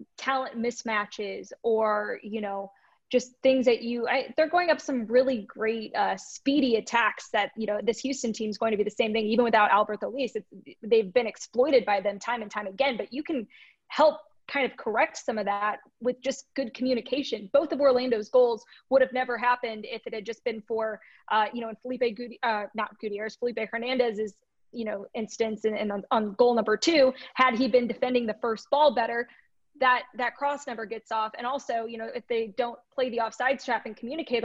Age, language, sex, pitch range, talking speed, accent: 20-39, English, female, 220-260 Hz, 215 wpm, American